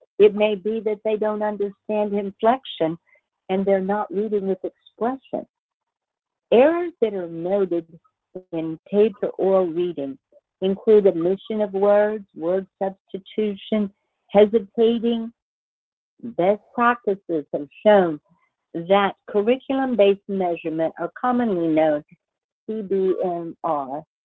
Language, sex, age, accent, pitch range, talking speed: English, female, 60-79, American, 185-230 Hz, 100 wpm